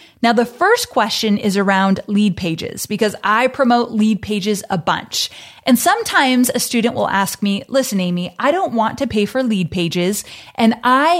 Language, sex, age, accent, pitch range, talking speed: English, female, 30-49, American, 195-255 Hz, 180 wpm